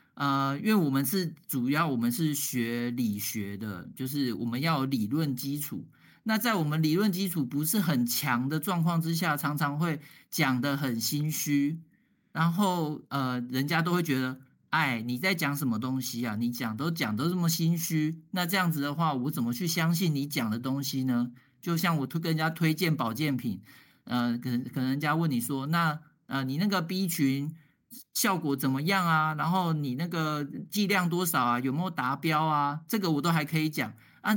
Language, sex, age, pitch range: Chinese, male, 50-69, 125-165 Hz